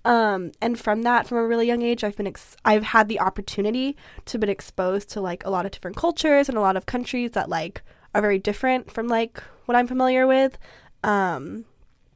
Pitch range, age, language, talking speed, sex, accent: 195-230 Hz, 10-29, English, 210 wpm, female, American